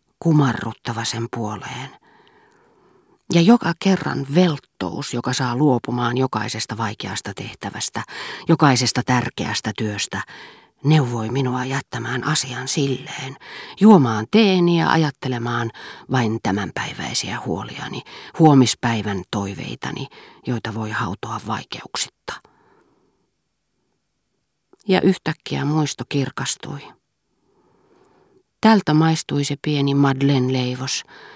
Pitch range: 120-160 Hz